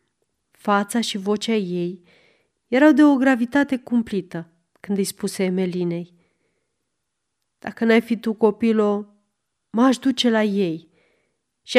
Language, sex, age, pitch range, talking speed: Romanian, female, 30-49, 190-245 Hz, 115 wpm